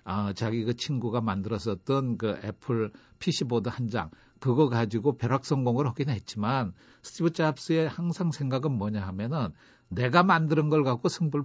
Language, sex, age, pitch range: Korean, male, 60-79, 115-155 Hz